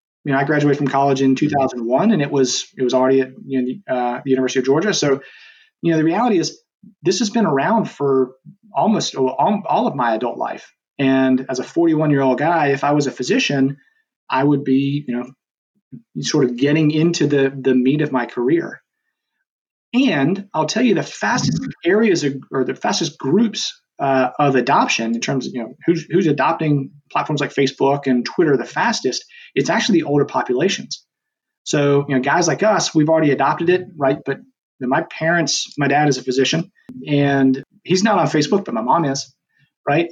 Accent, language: American, English